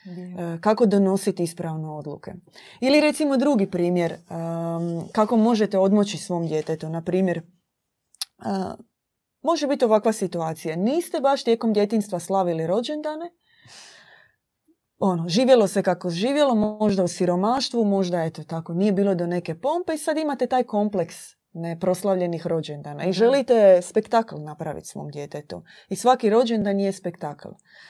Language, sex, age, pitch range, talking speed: Croatian, female, 30-49, 175-230 Hz, 130 wpm